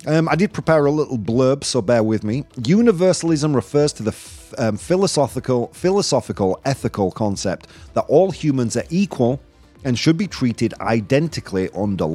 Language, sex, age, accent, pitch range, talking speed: English, male, 30-49, British, 105-150 Hz, 155 wpm